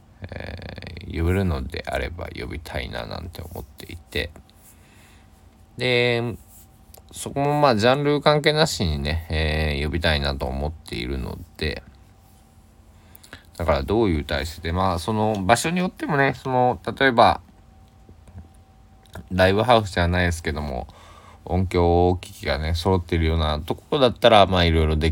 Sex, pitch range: male, 80-95 Hz